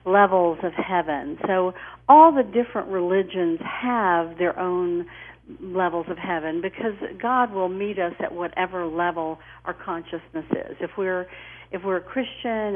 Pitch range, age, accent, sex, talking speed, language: 170-200 Hz, 50-69, American, female, 145 wpm, English